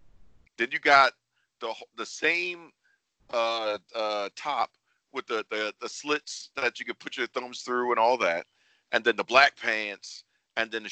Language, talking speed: English, 175 wpm